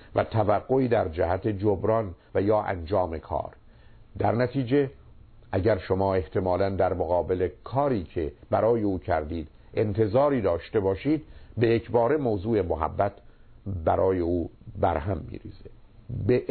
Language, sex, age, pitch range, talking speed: Persian, male, 50-69, 95-120 Hz, 125 wpm